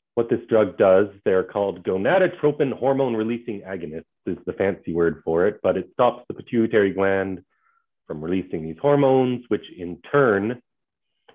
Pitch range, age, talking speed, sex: 95-140 Hz, 30-49, 150 wpm, male